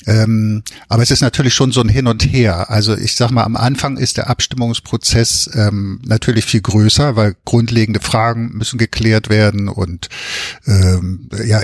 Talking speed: 170 wpm